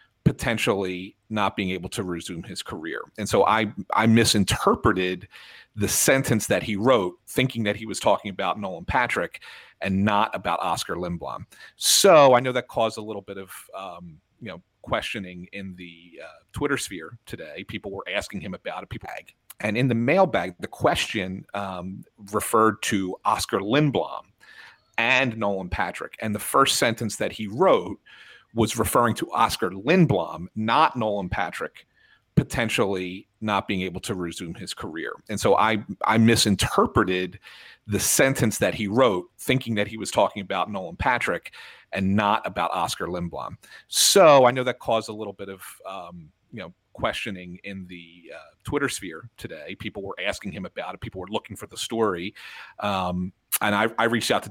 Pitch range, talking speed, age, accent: 90-110 Hz, 170 wpm, 40-59, American